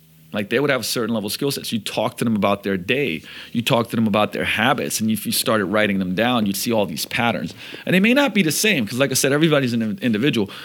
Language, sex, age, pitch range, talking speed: English, male, 40-59, 105-135 Hz, 280 wpm